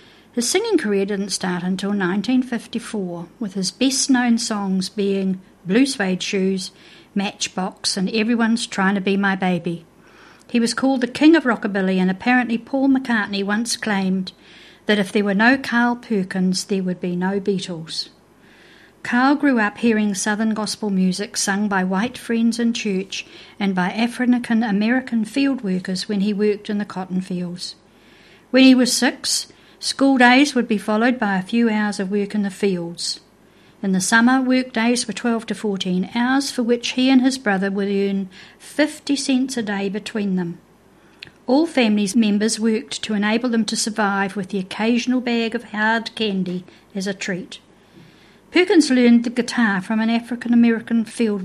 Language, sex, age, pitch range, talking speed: English, female, 60-79, 195-240 Hz, 165 wpm